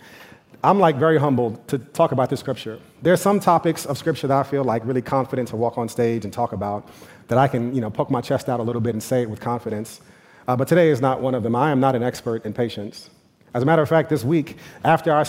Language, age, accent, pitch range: English, 30-49, American, 125-150 Hz